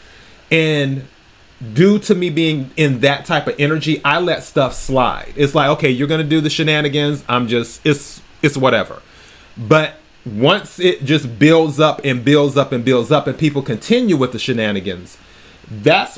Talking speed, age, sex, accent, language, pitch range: 175 wpm, 30-49, male, American, English, 130-155 Hz